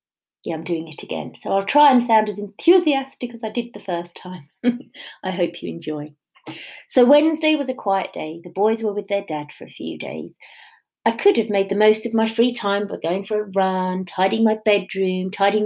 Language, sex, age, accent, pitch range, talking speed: English, female, 30-49, British, 175-235 Hz, 220 wpm